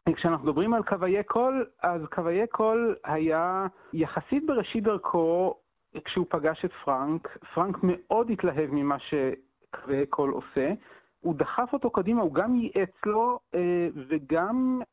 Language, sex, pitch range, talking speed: Hebrew, male, 165-225 Hz, 130 wpm